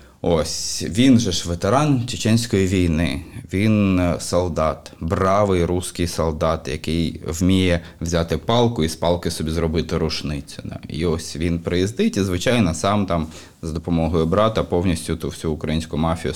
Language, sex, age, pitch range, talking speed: Ukrainian, male, 20-39, 85-105 Hz, 145 wpm